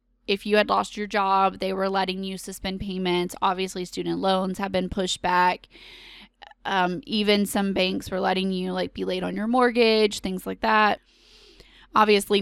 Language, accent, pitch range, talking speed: English, American, 185-215 Hz, 175 wpm